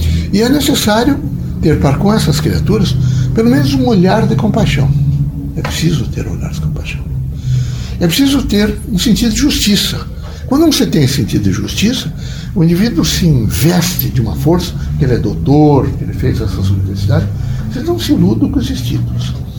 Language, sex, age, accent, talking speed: Portuguese, male, 60-79, Brazilian, 175 wpm